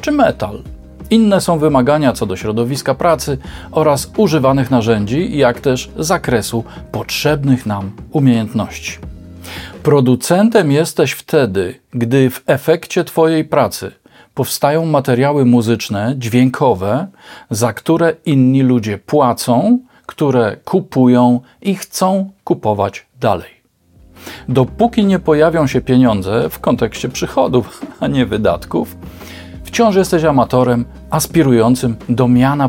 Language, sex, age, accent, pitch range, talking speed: Polish, male, 40-59, native, 115-155 Hz, 105 wpm